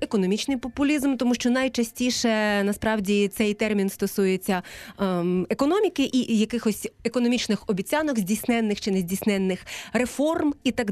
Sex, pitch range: female, 200-260 Hz